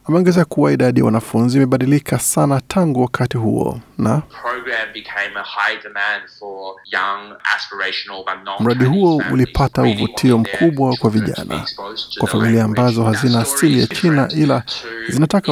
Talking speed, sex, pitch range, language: 100 wpm, male, 115-140 Hz, Swahili